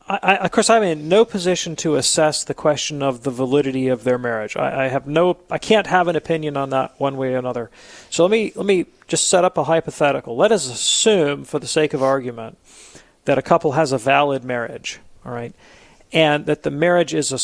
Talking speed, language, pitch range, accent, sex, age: 225 wpm, English, 135-165 Hz, American, male, 40-59